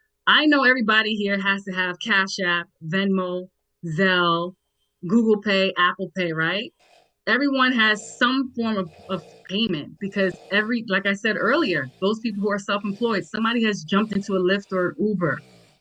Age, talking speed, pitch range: 20-39, 160 wpm, 175-215 Hz